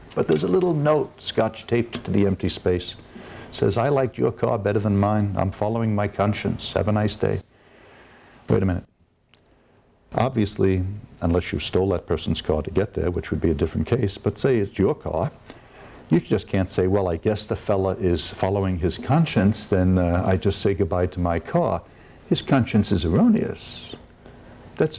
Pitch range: 95-120 Hz